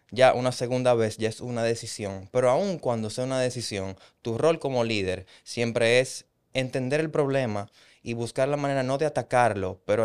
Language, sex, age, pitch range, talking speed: English, male, 20-39, 100-125 Hz, 185 wpm